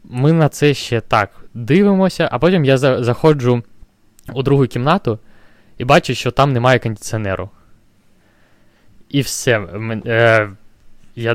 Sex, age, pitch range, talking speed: male, 20-39, 110-140 Hz, 125 wpm